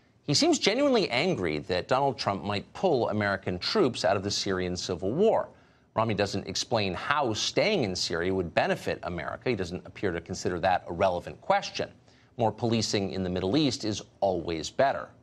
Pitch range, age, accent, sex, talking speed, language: 90-120 Hz, 50-69, American, male, 175 wpm, English